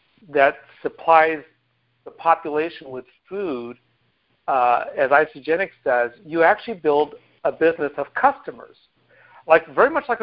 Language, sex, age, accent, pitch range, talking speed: English, male, 50-69, American, 150-200 Hz, 125 wpm